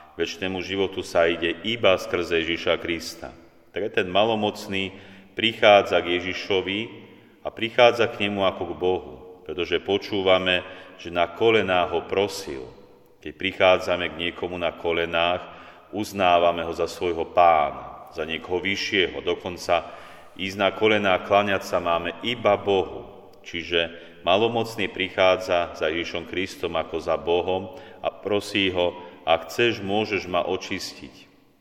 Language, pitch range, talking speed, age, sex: Slovak, 85-100 Hz, 130 wpm, 40-59, male